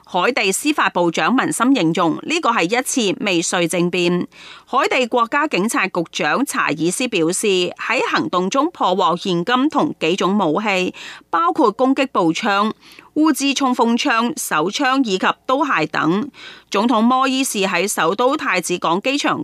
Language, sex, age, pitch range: Chinese, female, 30-49, 185-270 Hz